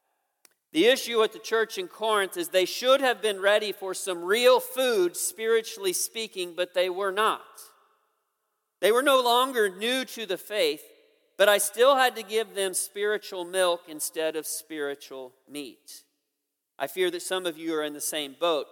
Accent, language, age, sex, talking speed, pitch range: American, English, 40-59, male, 175 wpm, 170-230 Hz